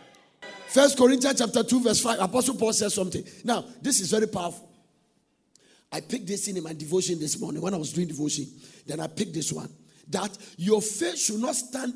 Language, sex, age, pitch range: English, male, 50-69, 185-250 Hz